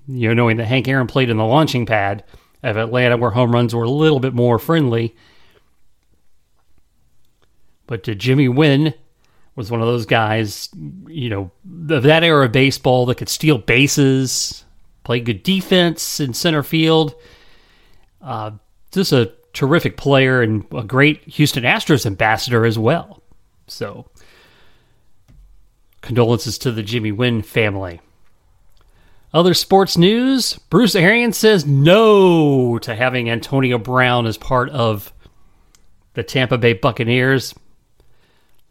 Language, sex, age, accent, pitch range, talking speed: English, male, 30-49, American, 110-145 Hz, 135 wpm